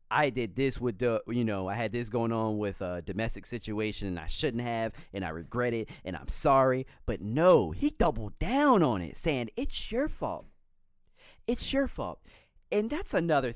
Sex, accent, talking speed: male, American, 195 wpm